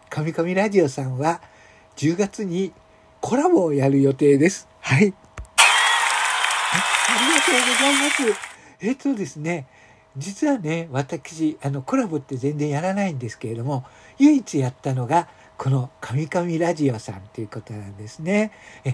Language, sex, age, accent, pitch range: Japanese, male, 60-79, native, 125-175 Hz